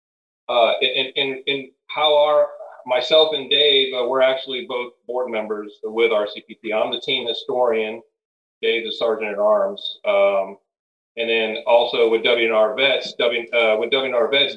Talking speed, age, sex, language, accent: 150 wpm, 40-59, male, English, American